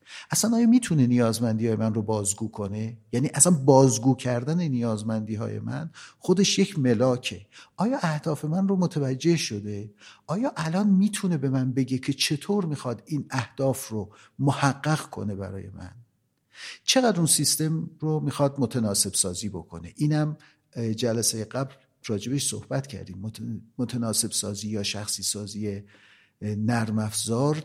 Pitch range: 105-155 Hz